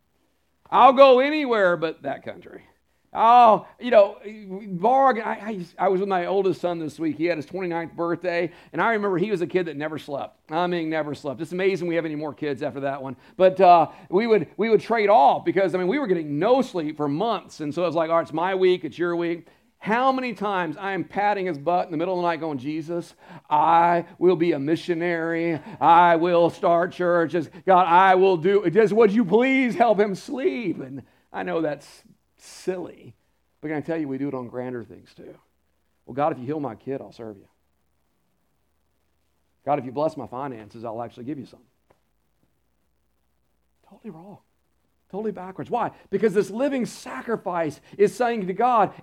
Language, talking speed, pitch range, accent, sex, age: English, 205 wpm, 160-220 Hz, American, male, 50-69